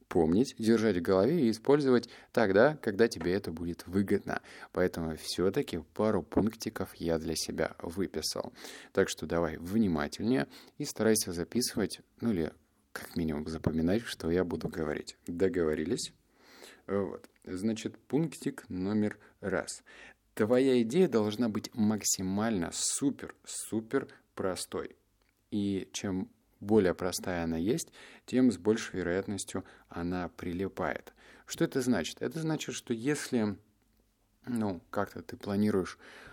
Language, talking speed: Russian, 120 wpm